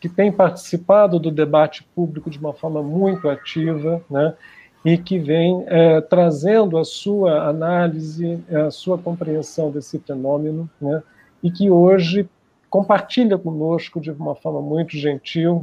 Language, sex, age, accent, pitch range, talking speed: Portuguese, male, 50-69, Brazilian, 150-175 Hz, 140 wpm